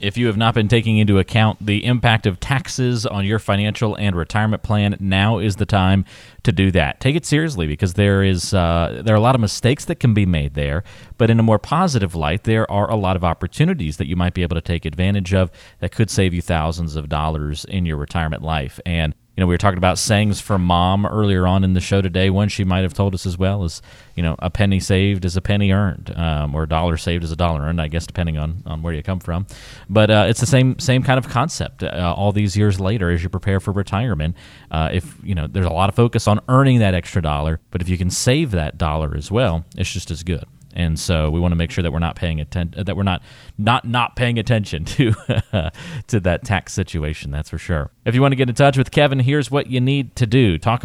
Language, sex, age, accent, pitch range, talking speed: English, male, 30-49, American, 90-115 Hz, 255 wpm